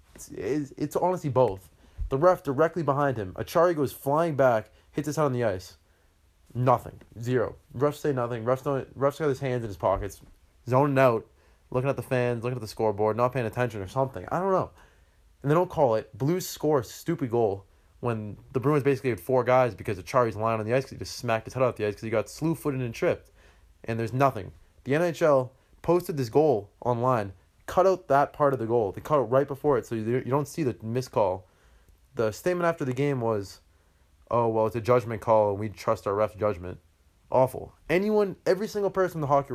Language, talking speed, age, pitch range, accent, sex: English, 220 wpm, 20-39, 95-135 Hz, American, male